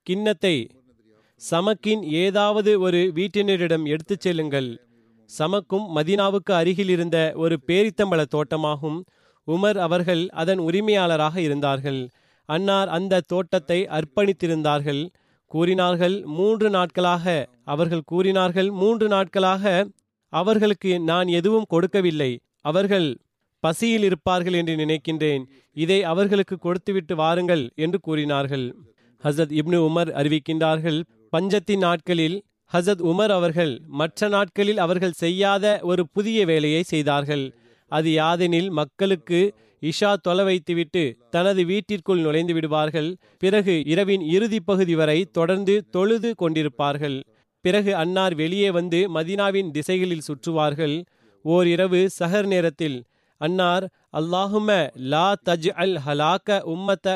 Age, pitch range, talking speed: 30-49, 155-195 Hz, 100 wpm